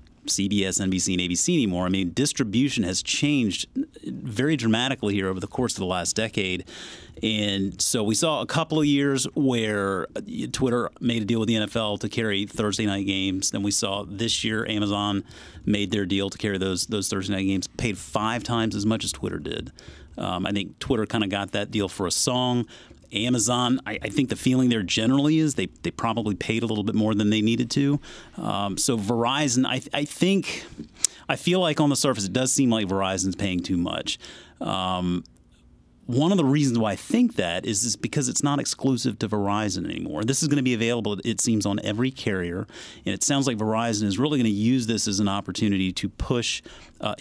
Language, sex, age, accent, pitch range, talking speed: English, male, 30-49, American, 100-125 Hz, 200 wpm